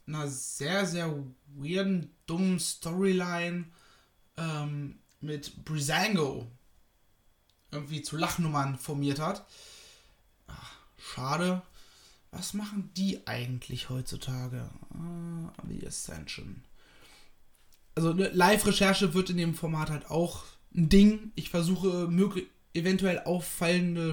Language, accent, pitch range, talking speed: German, German, 140-195 Hz, 100 wpm